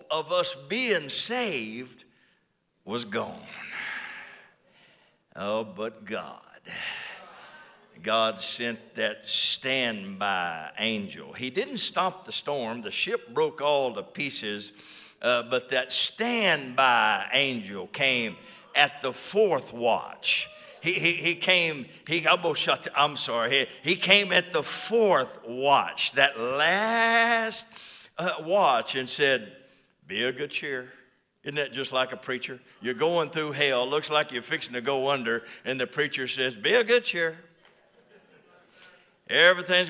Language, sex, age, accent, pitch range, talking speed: English, male, 60-79, American, 120-180 Hz, 130 wpm